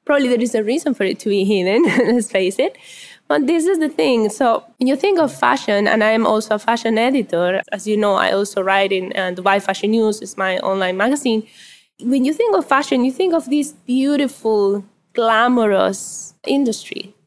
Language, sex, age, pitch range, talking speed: English, female, 10-29, 195-255 Hz, 200 wpm